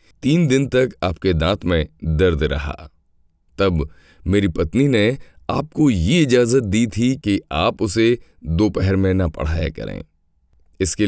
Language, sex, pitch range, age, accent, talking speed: Hindi, male, 80-110 Hz, 30-49, native, 140 wpm